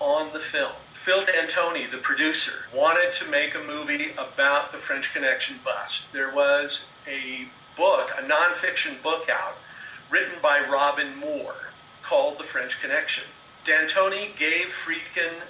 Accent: American